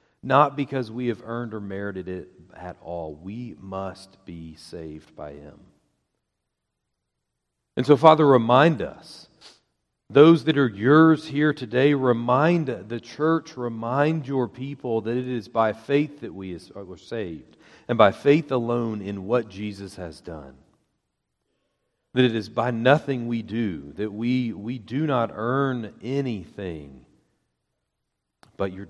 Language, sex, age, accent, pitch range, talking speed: English, male, 40-59, American, 95-130 Hz, 140 wpm